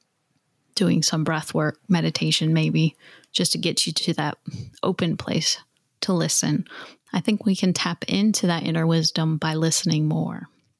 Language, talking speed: English, 155 wpm